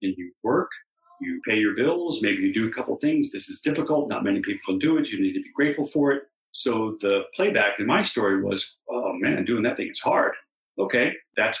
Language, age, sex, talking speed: English, 40-59, male, 240 wpm